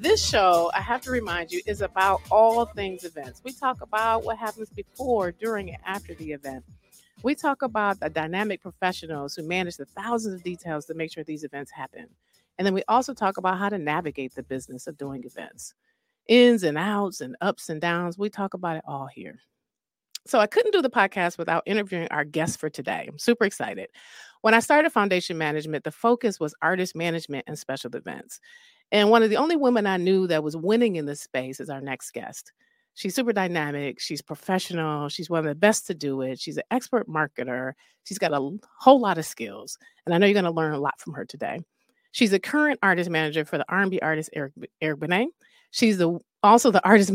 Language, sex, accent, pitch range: English, female, American, 155-225 Hz